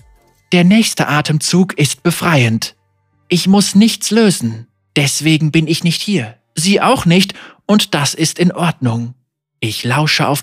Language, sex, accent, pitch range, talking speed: German, male, German, 140-195 Hz, 145 wpm